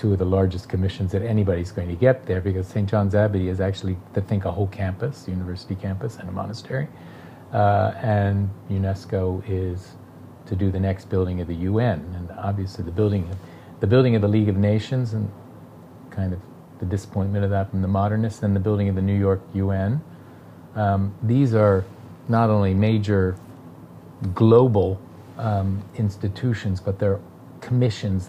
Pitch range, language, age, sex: 95-115 Hz, English, 40-59, male